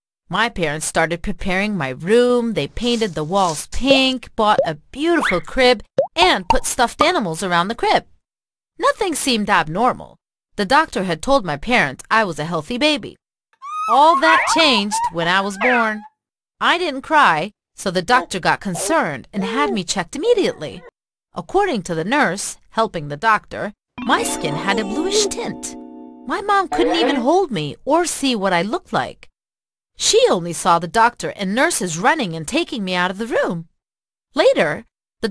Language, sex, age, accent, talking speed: English, female, 30-49, American, 165 wpm